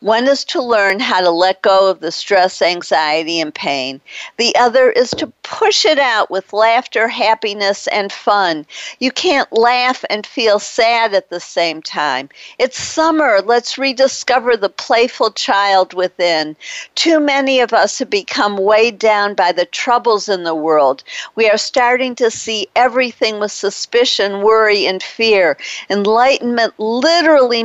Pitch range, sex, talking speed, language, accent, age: 195-250 Hz, female, 155 wpm, English, American, 50-69